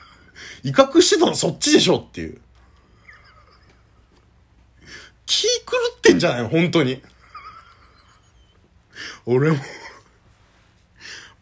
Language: Japanese